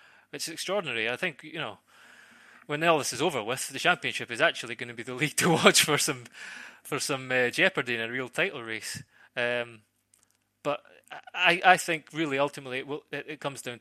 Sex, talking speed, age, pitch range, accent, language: male, 205 wpm, 20-39, 115-140 Hz, British, English